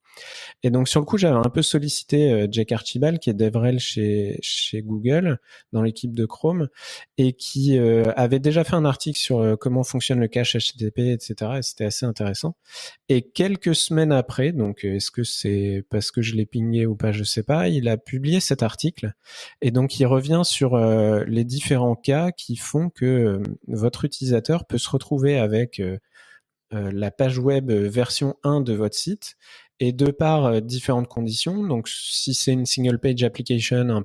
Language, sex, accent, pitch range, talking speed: French, male, French, 110-140 Hz, 190 wpm